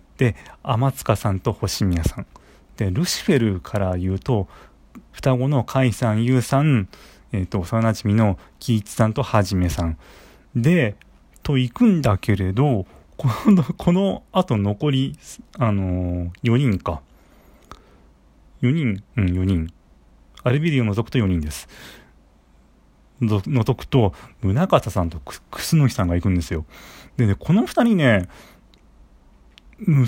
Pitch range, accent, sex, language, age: 85-130 Hz, native, male, Japanese, 30-49